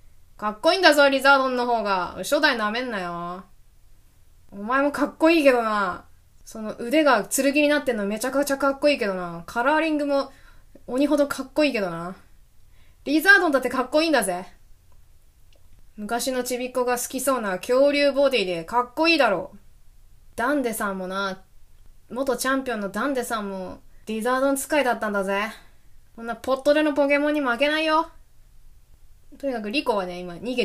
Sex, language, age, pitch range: female, Japanese, 20-39, 210-295 Hz